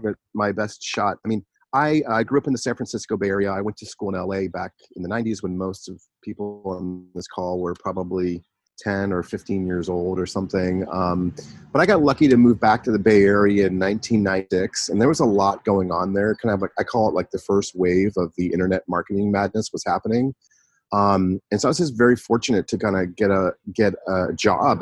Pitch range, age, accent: 95-115 Hz, 30-49, American